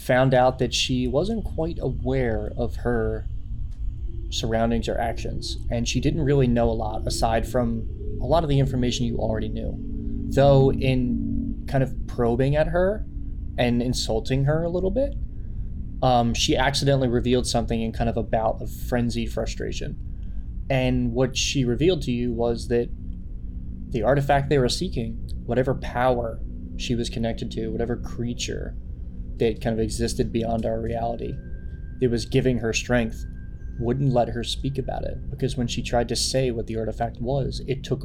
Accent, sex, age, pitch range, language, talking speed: American, male, 20-39, 110-125 Hz, English, 165 wpm